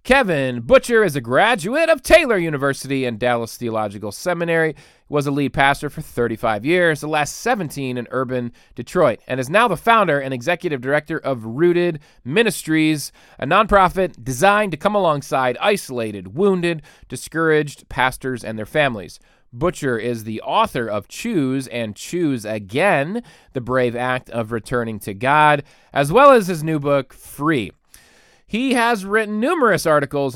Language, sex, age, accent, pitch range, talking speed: English, male, 30-49, American, 125-175 Hz, 155 wpm